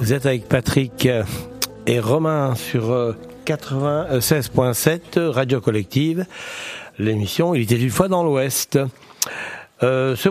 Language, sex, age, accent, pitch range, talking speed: French, male, 60-79, French, 120-155 Hz, 105 wpm